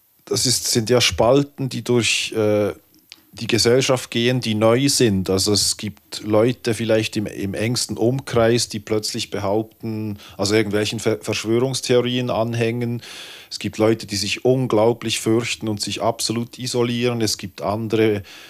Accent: German